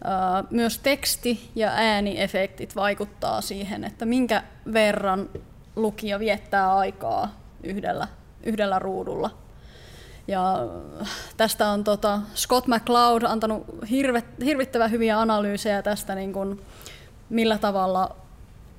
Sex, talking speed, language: female, 100 wpm, Finnish